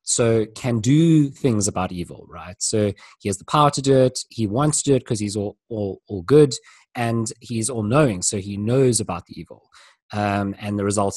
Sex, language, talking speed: male, English, 215 wpm